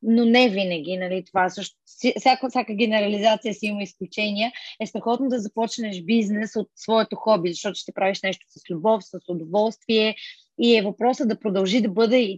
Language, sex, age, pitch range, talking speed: Bulgarian, female, 20-39, 190-225 Hz, 170 wpm